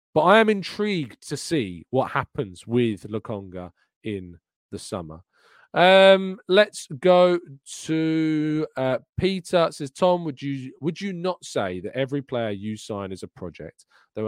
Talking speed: 155 wpm